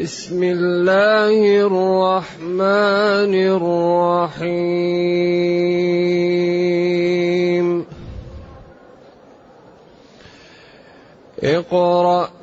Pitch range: 175-215 Hz